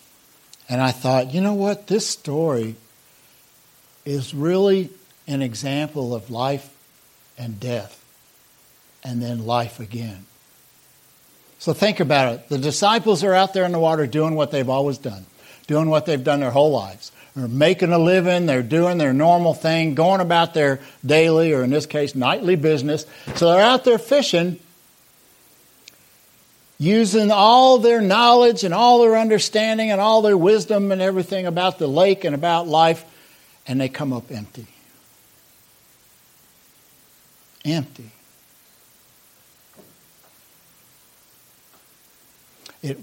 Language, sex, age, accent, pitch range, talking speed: English, male, 60-79, American, 130-185 Hz, 130 wpm